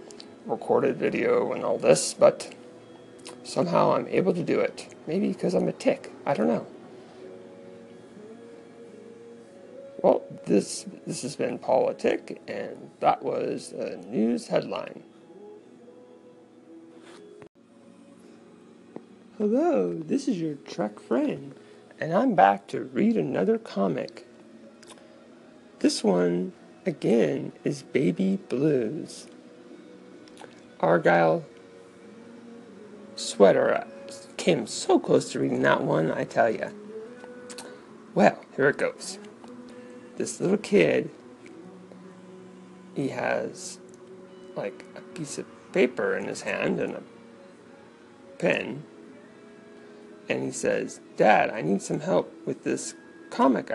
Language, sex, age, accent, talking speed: English, male, 40-59, American, 105 wpm